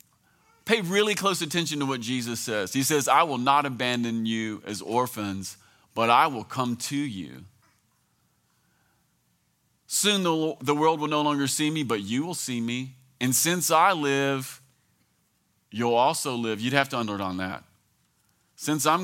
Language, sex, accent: English, male, American